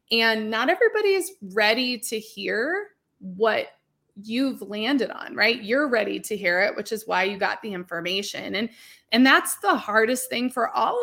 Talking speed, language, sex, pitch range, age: 175 wpm, English, female, 210-275 Hz, 20-39